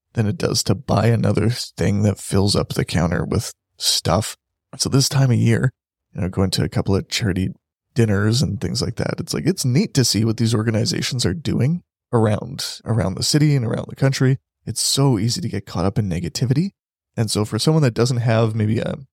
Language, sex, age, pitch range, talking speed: English, male, 20-39, 105-125 Hz, 215 wpm